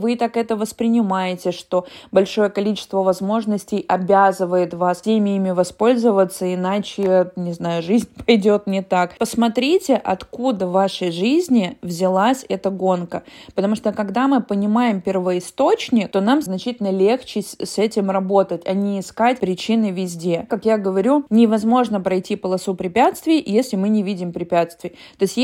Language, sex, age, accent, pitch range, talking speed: Russian, female, 20-39, native, 190-255 Hz, 140 wpm